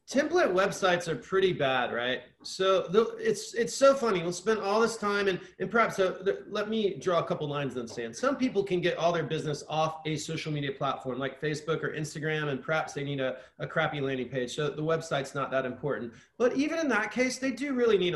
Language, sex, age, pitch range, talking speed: English, male, 30-49, 150-195 Hz, 230 wpm